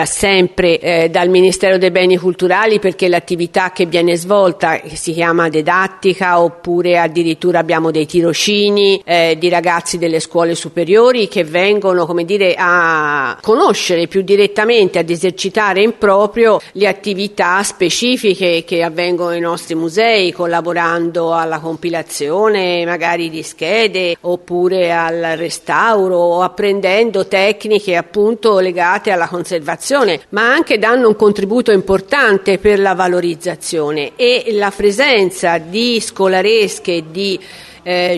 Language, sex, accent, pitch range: Italian, female, native, 175-205 Hz